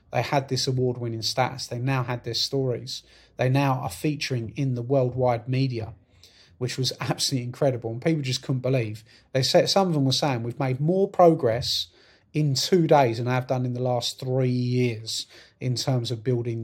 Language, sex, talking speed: English, male, 190 wpm